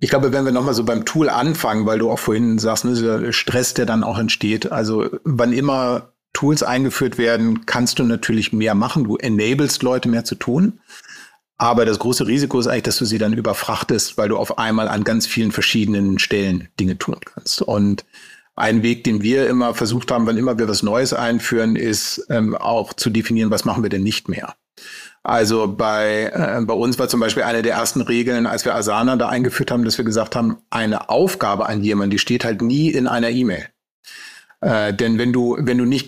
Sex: male